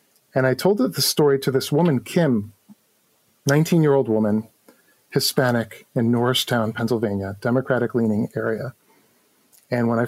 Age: 40-59